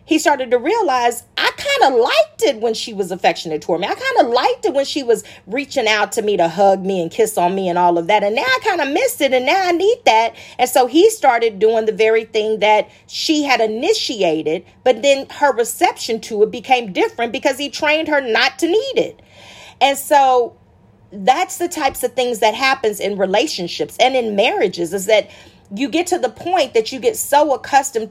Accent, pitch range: American, 200-305 Hz